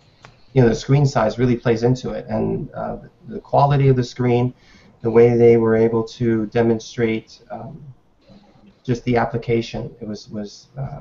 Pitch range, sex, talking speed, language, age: 115-125 Hz, male, 165 wpm, English, 30-49